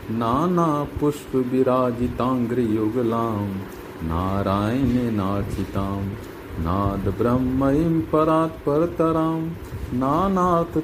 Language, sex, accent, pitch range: Hindi, male, native, 95-120 Hz